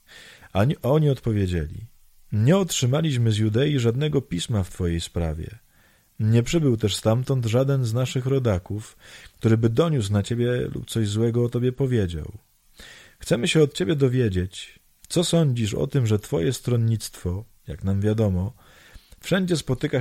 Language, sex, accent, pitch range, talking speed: Polish, male, native, 95-130 Hz, 145 wpm